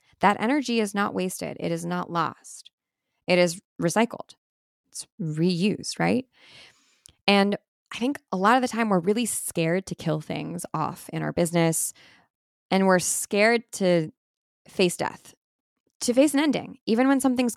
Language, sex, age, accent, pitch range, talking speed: English, female, 10-29, American, 165-210 Hz, 155 wpm